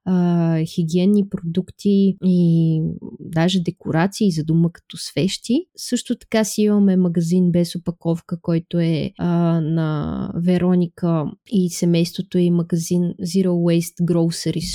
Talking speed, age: 115 wpm, 20-39